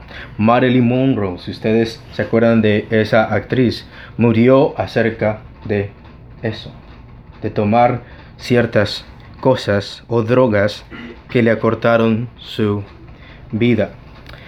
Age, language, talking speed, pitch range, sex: 30-49, English, 100 wpm, 115-160 Hz, male